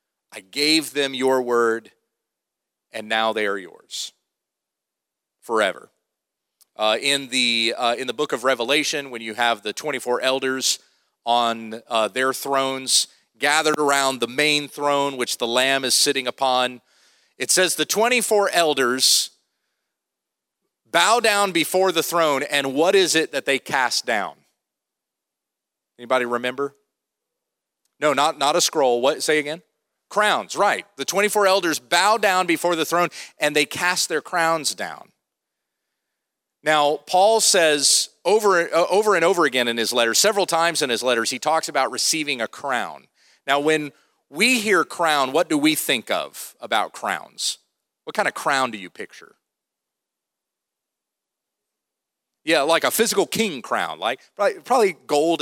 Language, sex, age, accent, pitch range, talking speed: English, male, 40-59, American, 130-175 Hz, 145 wpm